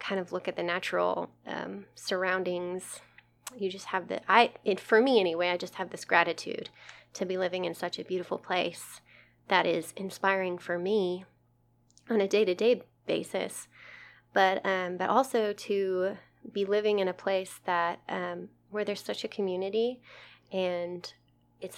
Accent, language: American, English